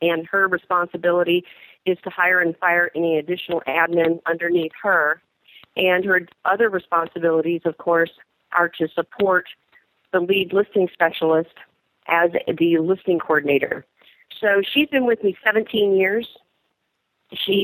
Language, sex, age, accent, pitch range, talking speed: English, female, 40-59, American, 165-195 Hz, 130 wpm